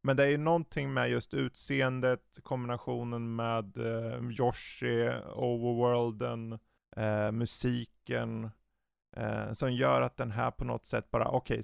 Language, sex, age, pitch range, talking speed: Swedish, male, 20-39, 115-145 Hz, 130 wpm